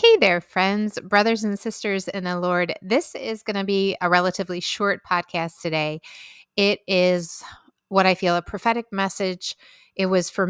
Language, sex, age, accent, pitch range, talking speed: English, female, 30-49, American, 175-210 Hz, 170 wpm